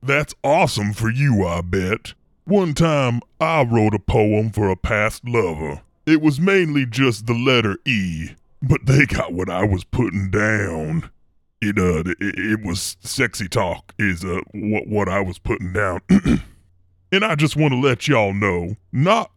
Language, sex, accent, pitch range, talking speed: English, female, American, 95-135 Hz, 165 wpm